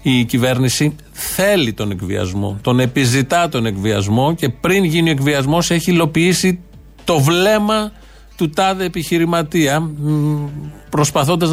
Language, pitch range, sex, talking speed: Greek, 125-165 Hz, male, 115 wpm